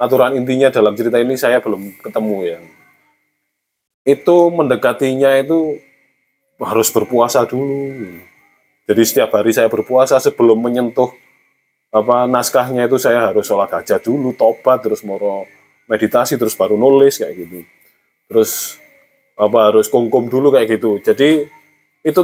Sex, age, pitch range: male, 20-39, 110-150 Hz